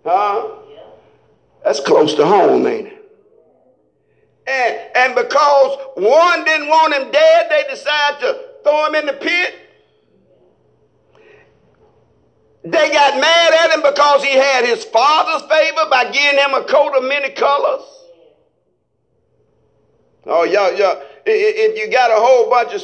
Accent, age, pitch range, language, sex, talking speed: American, 50-69, 275-440 Hz, English, male, 135 wpm